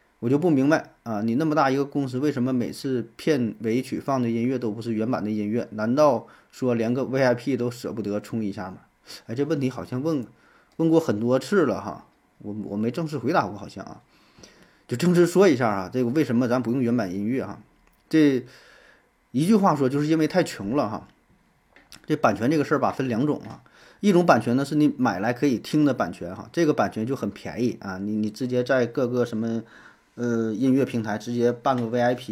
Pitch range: 115-140 Hz